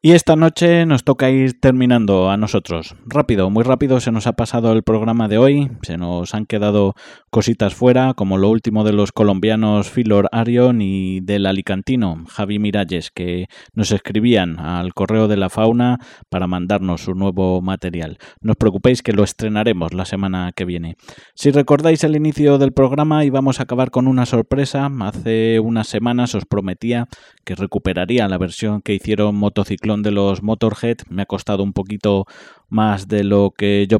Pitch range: 100-120 Hz